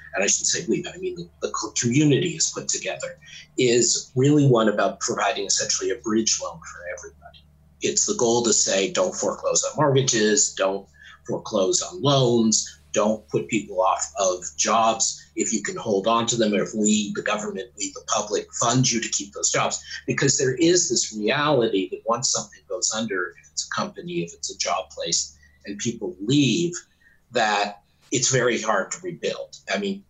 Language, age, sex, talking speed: English, 50-69, male, 190 wpm